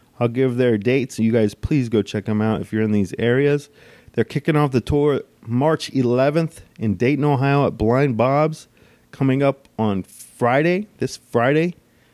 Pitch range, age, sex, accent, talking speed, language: 115-155 Hz, 30-49, male, American, 175 wpm, English